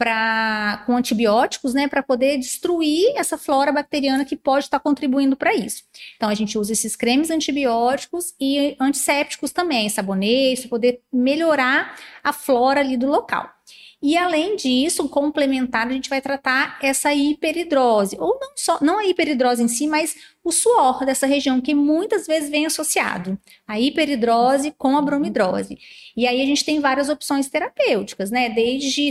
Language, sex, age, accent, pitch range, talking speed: Portuguese, female, 30-49, Brazilian, 230-290 Hz, 155 wpm